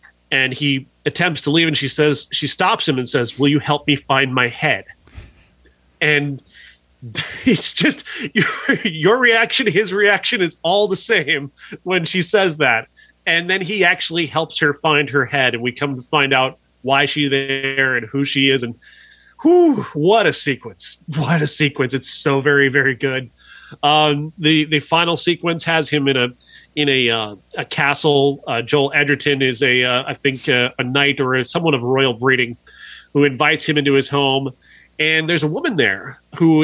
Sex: male